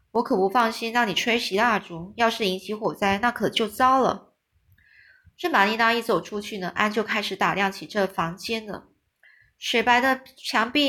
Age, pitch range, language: 20-39, 190-235 Hz, Chinese